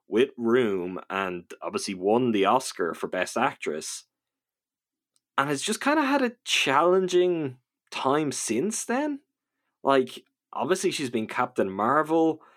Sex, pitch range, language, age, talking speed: male, 110-145 Hz, English, 20-39, 130 wpm